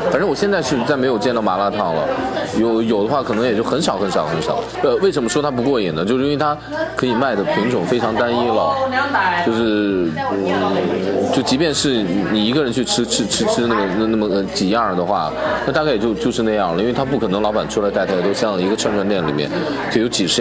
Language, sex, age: Chinese, male, 20-39